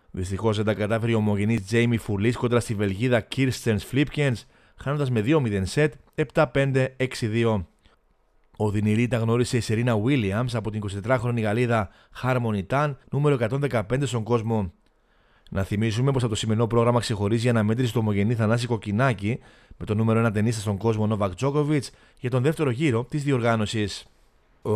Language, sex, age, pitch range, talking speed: Greek, male, 30-49, 110-130 Hz, 155 wpm